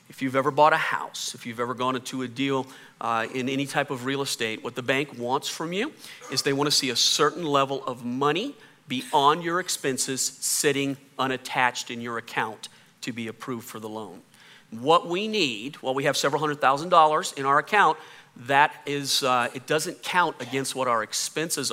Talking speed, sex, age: 200 wpm, male, 40-59